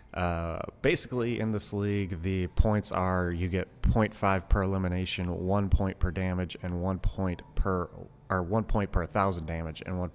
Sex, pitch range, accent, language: male, 90-110 Hz, American, English